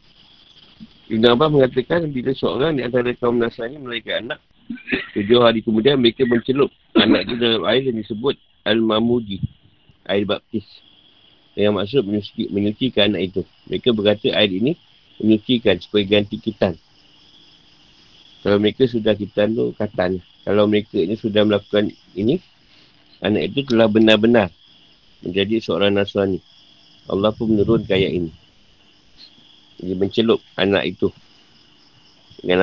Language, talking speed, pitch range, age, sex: Malay, 125 wpm, 100-115 Hz, 50-69, male